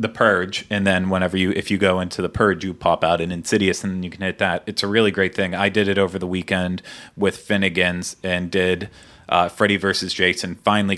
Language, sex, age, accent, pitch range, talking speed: English, male, 30-49, American, 90-105 Hz, 240 wpm